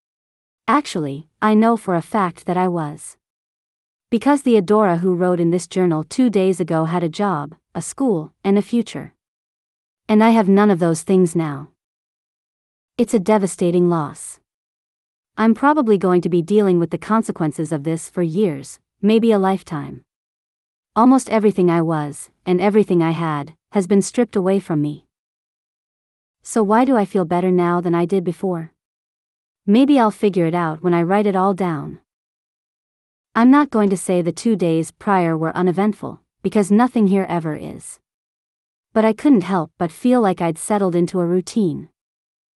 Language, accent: English, American